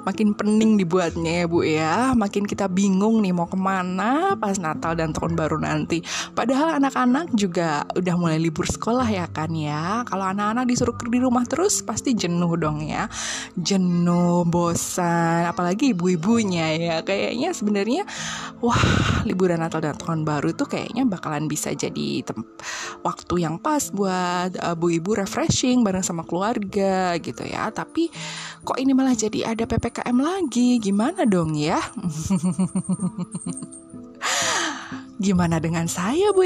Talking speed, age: 140 wpm, 20-39